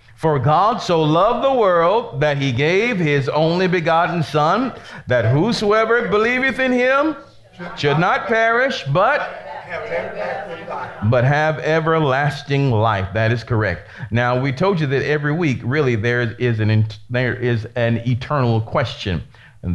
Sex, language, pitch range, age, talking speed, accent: male, English, 110-155 Hz, 40-59, 130 wpm, American